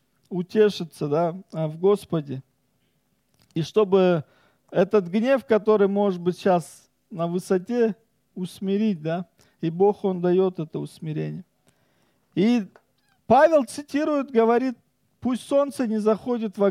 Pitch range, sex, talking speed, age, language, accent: 170-220 Hz, male, 105 wpm, 40-59, Russian, native